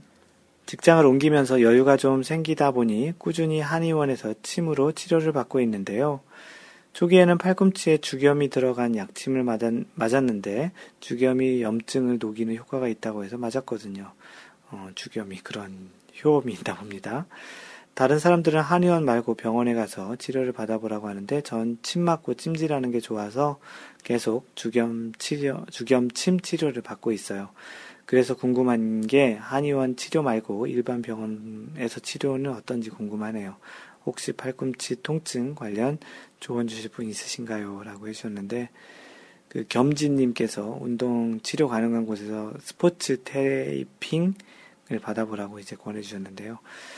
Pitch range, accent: 110-145 Hz, native